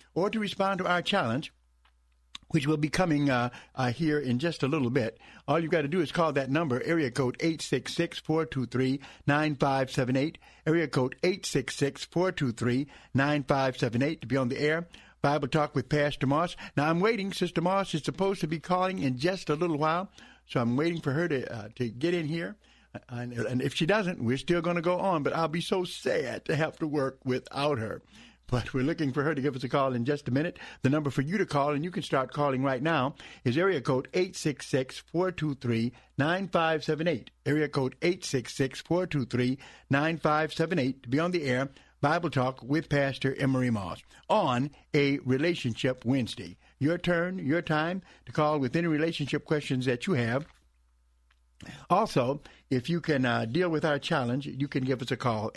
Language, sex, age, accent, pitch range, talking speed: English, male, 60-79, American, 130-165 Hz, 180 wpm